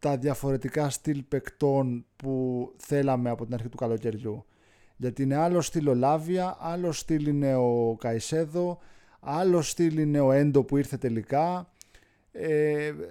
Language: Greek